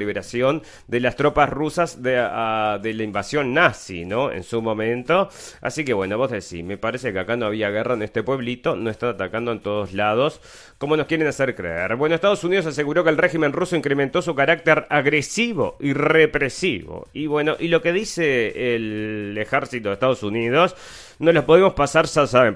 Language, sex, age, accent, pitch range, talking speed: Spanish, male, 30-49, Argentinian, 110-150 Hz, 190 wpm